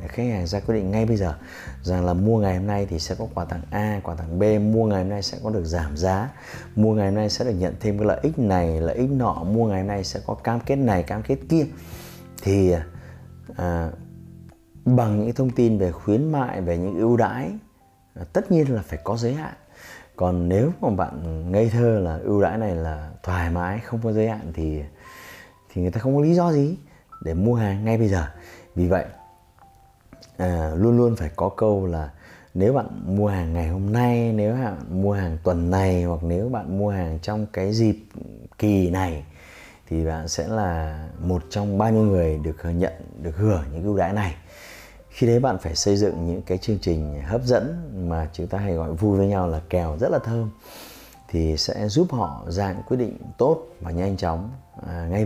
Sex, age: male, 20-39